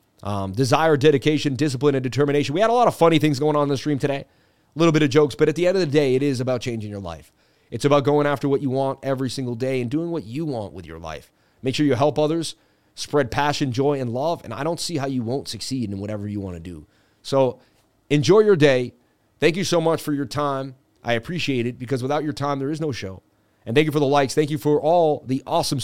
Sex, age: male, 30-49